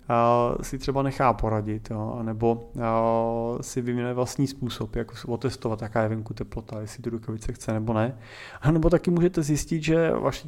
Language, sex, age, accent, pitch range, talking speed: Czech, male, 30-49, native, 110-140 Hz, 155 wpm